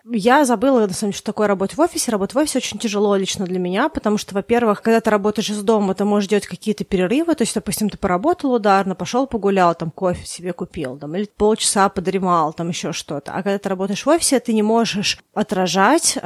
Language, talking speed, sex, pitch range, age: Russian, 220 wpm, female, 190-230 Hz, 30-49